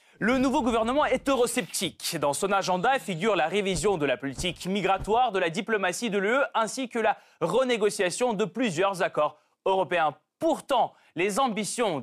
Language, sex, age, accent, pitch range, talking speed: French, male, 20-39, French, 175-240 Hz, 155 wpm